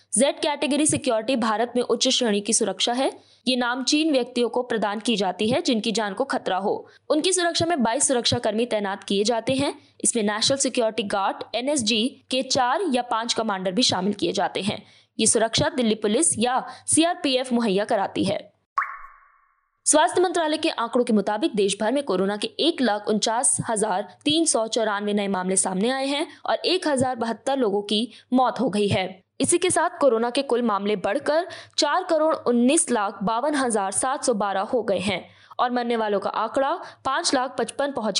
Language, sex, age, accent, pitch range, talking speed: Hindi, female, 20-39, native, 210-275 Hz, 175 wpm